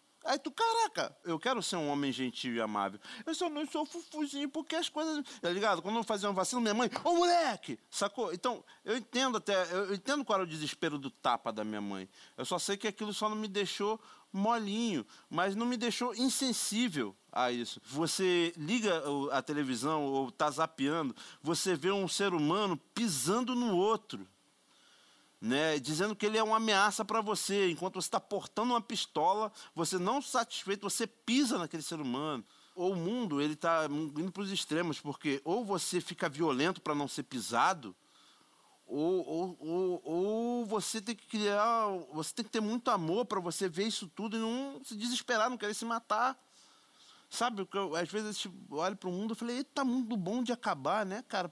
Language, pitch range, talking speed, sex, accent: Portuguese, 170-240 Hz, 195 wpm, male, Brazilian